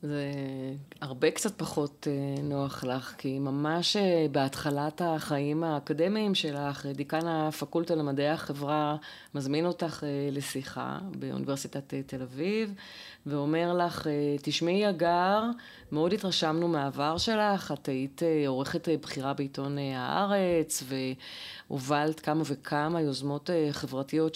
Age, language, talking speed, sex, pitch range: 30-49, Hebrew, 100 wpm, female, 145-185 Hz